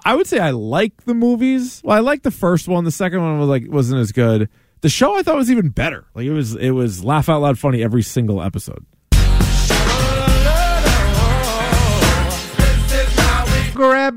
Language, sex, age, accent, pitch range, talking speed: English, male, 20-39, American, 135-205 Hz, 175 wpm